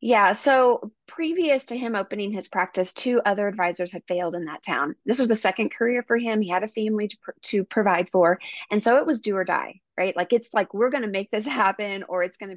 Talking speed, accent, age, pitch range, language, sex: 255 wpm, American, 20-39, 185-240 Hz, English, female